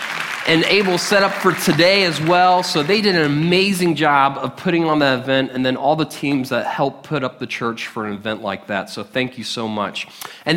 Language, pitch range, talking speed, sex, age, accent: English, 130-170 Hz, 235 wpm, male, 20-39, American